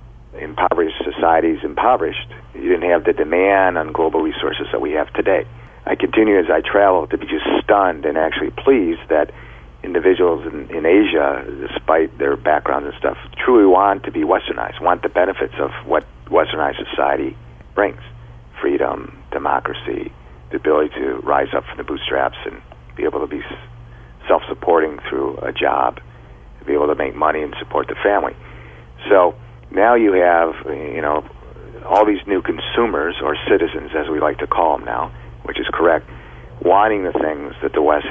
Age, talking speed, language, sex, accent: 50-69, 170 wpm, English, male, American